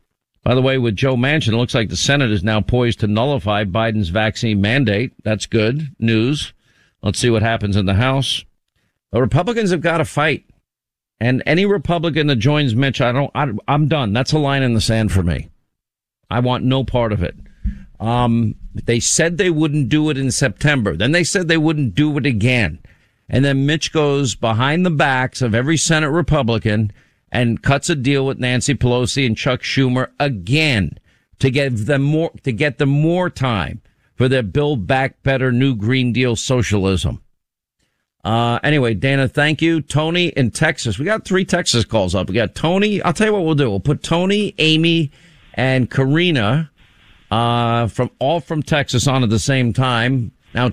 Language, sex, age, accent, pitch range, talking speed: English, male, 50-69, American, 115-150 Hz, 185 wpm